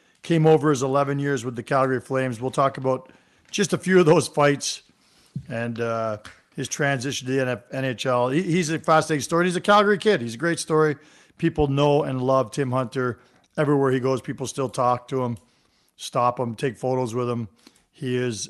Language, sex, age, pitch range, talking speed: English, male, 50-69, 125-155 Hz, 190 wpm